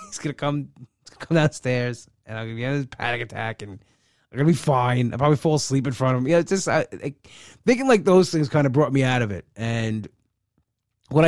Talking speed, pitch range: 245 wpm, 110-140 Hz